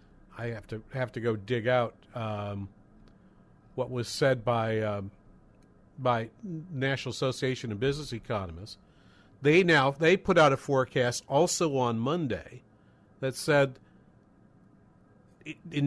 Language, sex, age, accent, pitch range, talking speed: English, male, 40-59, American, 125-165 Hz, 125 wpm